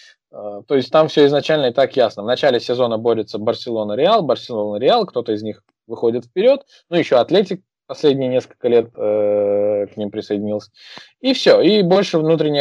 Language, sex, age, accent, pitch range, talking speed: Russian, male, 20-39, native, 110-150 Hz, 165 wpm